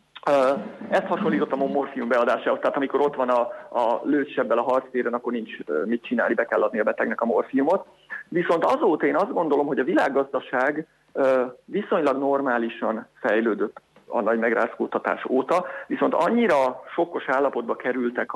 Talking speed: 145 wpm